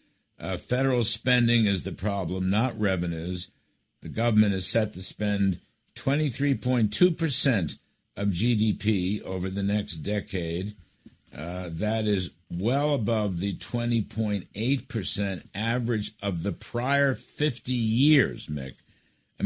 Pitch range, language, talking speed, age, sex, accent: 100-125 Hz, English, 110 wpm, 60-79, male, American